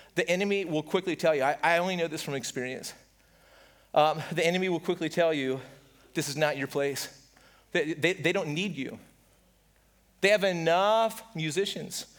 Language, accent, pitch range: English, American, 165-210 Hz